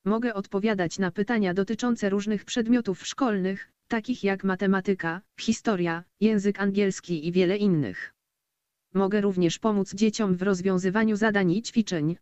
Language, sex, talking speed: Polish, female, 130 wpm